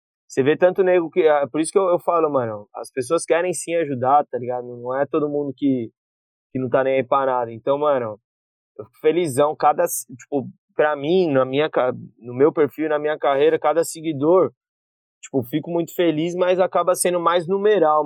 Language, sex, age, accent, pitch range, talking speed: Portuguese, male, 20-39, Brazilian, 130-165 Hz, 200 wpm